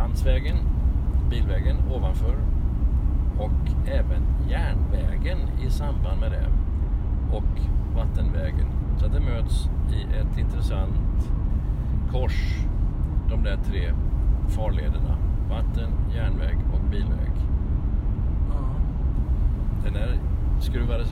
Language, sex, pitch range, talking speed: Swedish, male, 70-80 Hz, 85 wpm